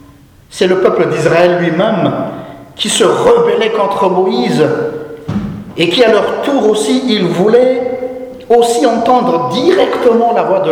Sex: male